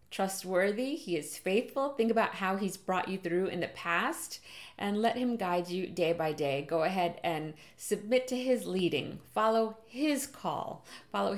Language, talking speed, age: English, 175 wpm, 30-49